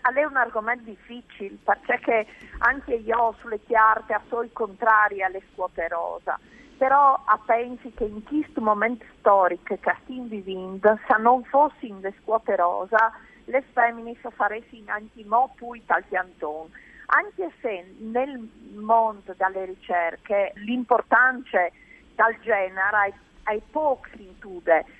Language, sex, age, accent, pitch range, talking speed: Italian, female, 40-59, native, 200-245 Hz, 125 wpm